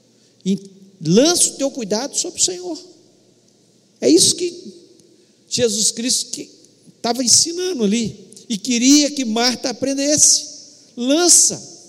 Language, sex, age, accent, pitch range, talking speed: Portuguese, male, 50-69, Brazilian, 215-275 Hz, 110 wpm